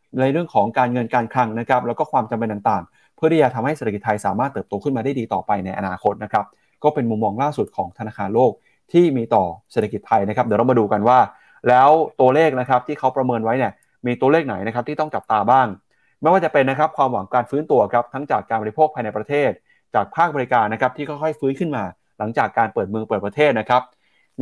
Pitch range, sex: 115-145 Hz, male